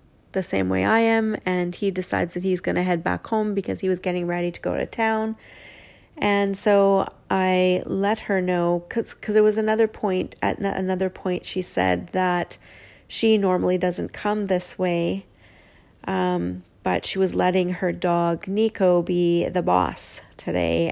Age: 30-49